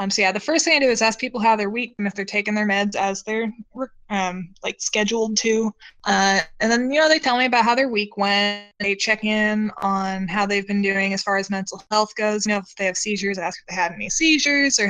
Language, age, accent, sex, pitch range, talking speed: English, 20-39, American, female, 195-225 Hz, 265 wpm